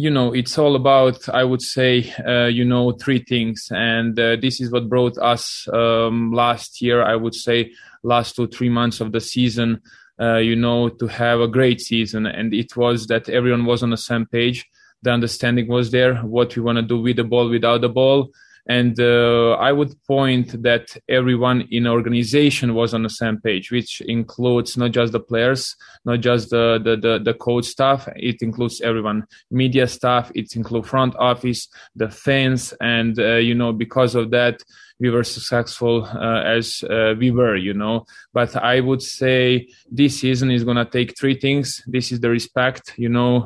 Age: 20-39